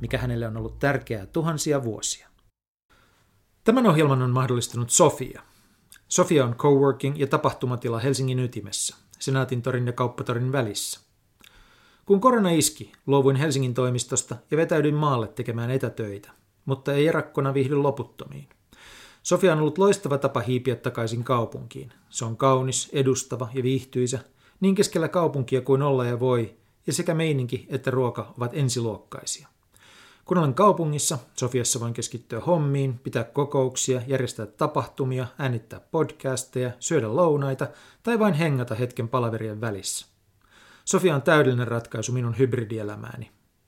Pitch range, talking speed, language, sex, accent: 115-140 Hz, 130 wpm, Finnish, male, native